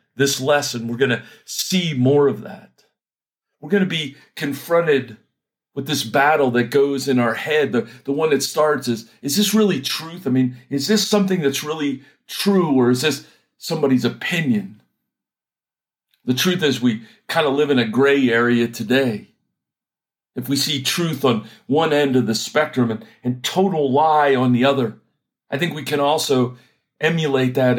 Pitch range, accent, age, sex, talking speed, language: 130-160 Hz, American, 50-69, male, 175 wpm, English